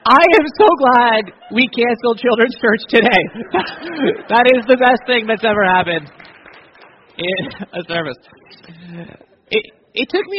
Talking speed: 140 wpm